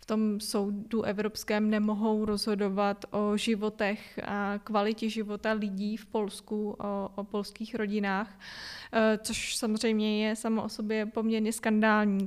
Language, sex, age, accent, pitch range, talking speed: Czech, female, 20-39, native, 205-230 Hz, 125 wpm